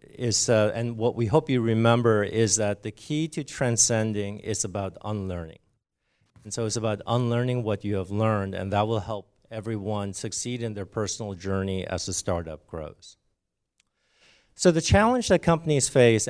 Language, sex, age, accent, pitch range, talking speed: English, male, 50-69, American, 105-130 Hz, 170 wpm